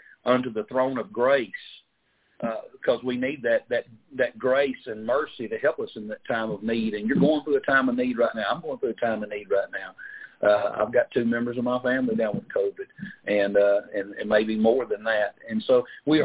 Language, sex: English, male